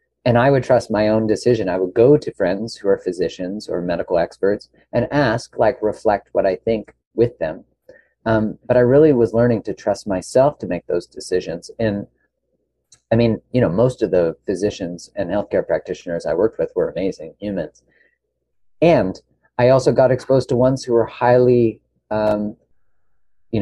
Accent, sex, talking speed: American, male, 180 wpm